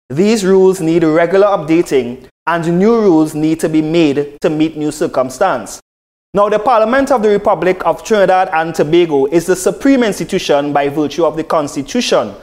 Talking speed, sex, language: 170 wpm, male, English